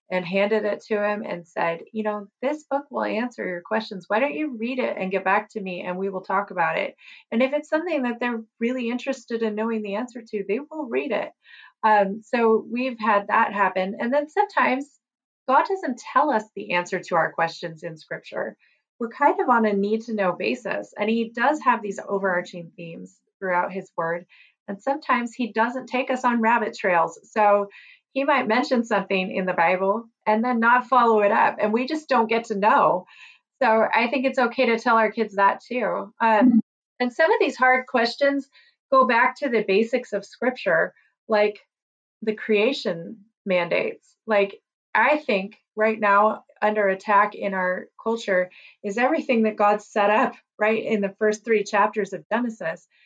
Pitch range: 200-250 Hz